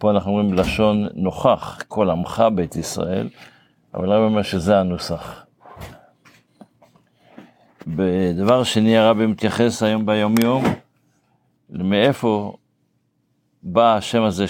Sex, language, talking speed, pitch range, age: male, Hebrew, 100 wpm, 95-115 Hz, 60-79